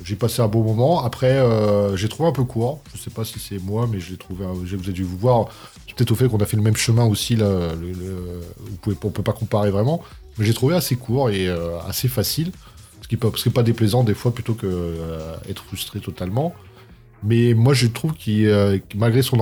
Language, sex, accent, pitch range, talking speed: French, male, French, 95-120 Hz, 245 wpm